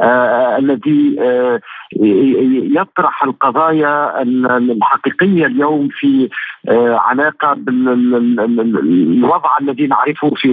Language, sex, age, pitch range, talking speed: Arabic, male, 50-69, 125-155 Hz, 75 wpm